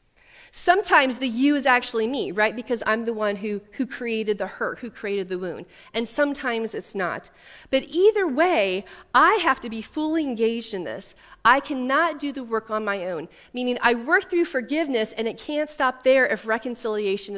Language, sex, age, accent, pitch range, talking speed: English, female, 40-59, American, 220-290 Hz, 190 wpm